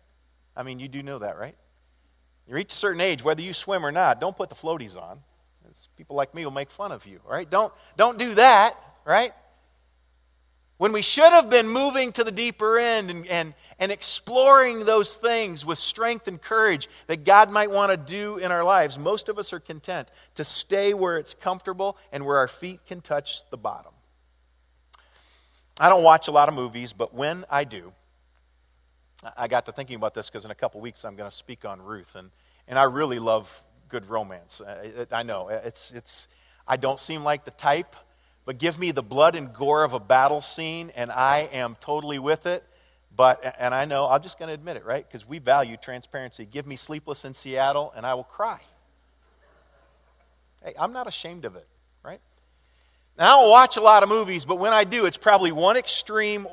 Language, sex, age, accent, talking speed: English, male, 40-59, American, 205 wpm